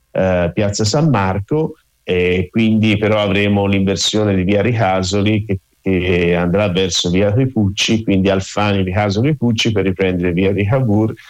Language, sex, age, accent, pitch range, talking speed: Italian, male, 50-69, native, 90-105 Hz, 155 wpm